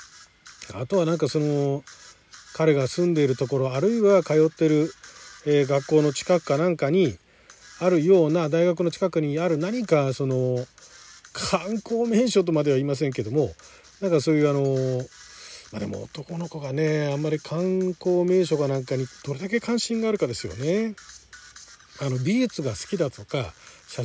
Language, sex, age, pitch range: Japanese, male, 40-59, 145-205 Hz